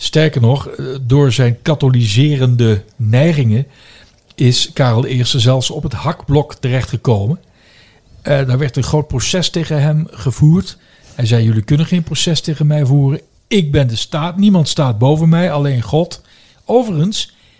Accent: Dutch